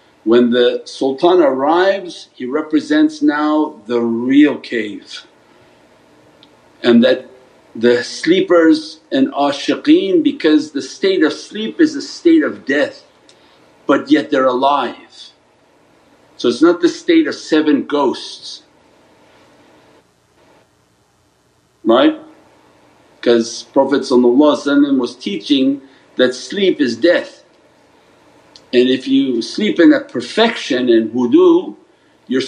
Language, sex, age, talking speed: English, male, 50-69, 105 wpm